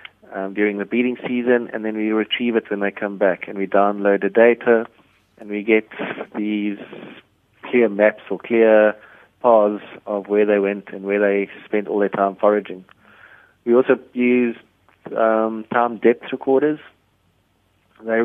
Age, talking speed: 30-49, 160 wpm